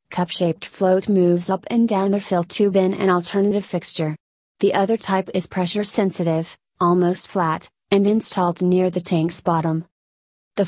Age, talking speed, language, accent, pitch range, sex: 30-49, 165 wpm, English, American, 175-200 Hz, female